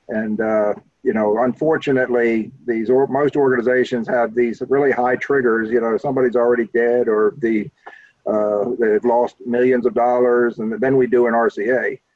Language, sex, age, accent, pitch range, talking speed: English, male, 50-69, American, 120-135 Hz, 165 wpm